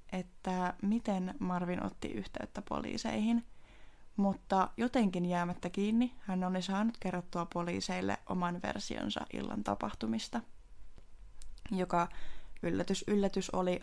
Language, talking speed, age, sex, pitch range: Finnish, 100 wpm, 20-39, female, 175-200 Hz